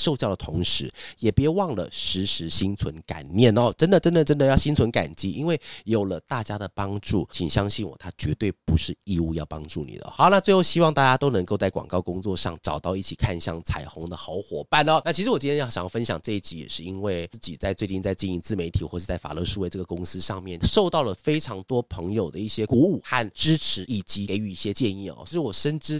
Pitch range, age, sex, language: 90-120 Hz, 30-49, male, Chinese